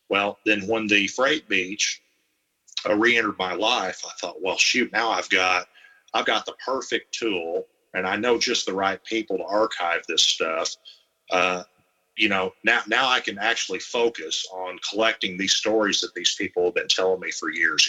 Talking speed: 185 wpm